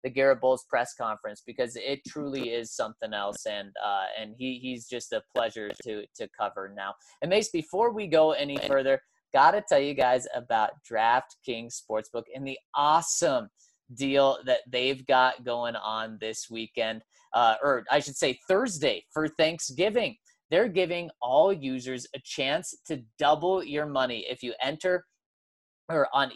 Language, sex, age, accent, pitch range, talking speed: English, male, 30-49, American, 120-160 Hz, 160 wpm